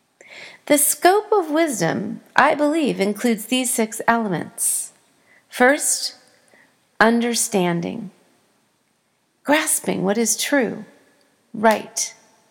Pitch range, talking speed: 195-270 Hz, 80 wpm